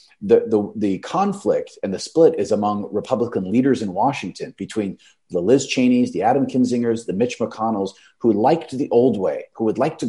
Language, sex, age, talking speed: English, male, 30-49, 190 wpm